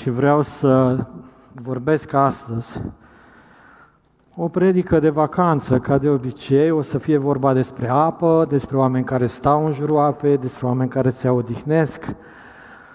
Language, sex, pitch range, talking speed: Romanian, male, 125-155 Hz, 135 wpm